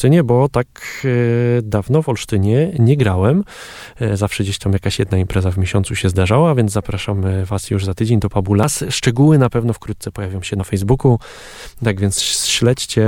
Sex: male